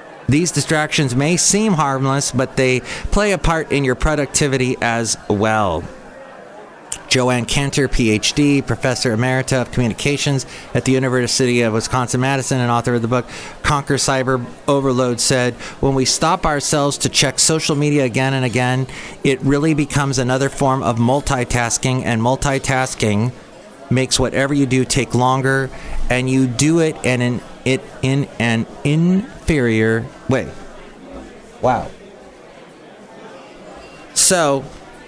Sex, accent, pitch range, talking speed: male, American, 120-145 Hz, 125 wpm